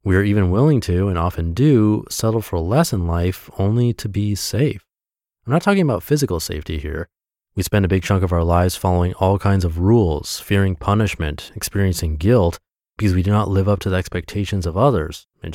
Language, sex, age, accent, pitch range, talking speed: English, male, 30-49, American, 85-110 Hz, 205 wpm